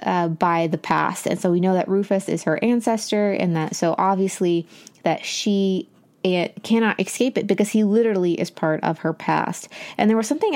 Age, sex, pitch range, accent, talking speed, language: 20-39, female, 170-205 Hz, American, 200 wpm, English